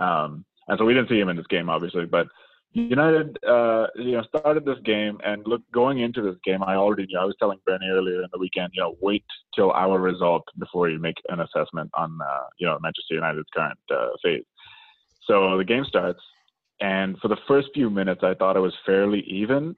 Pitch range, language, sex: 90-110 Hz, English, male